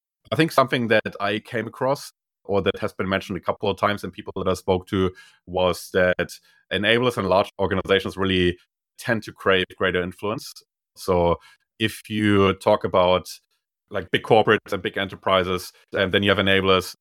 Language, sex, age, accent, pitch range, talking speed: English, male, 30-49, German, 85-100 Hz, 175 wpm